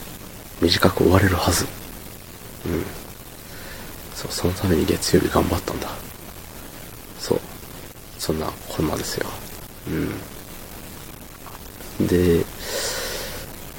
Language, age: Japanese, 40-59